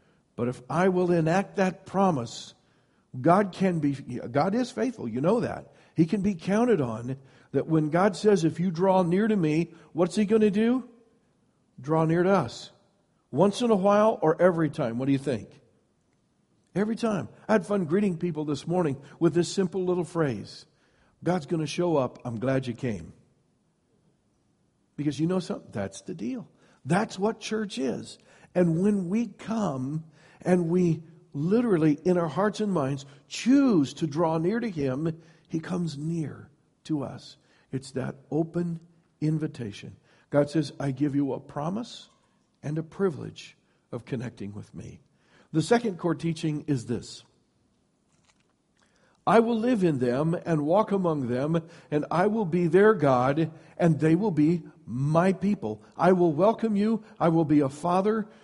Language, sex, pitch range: English, male, 150-195 Hz